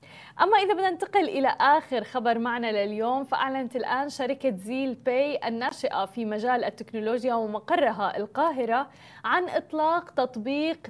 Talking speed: 125 wpm